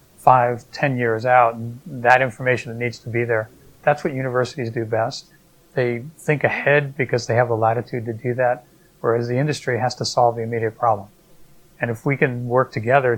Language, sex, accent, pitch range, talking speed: English, male, American, 115-130 Hz, 190 wpm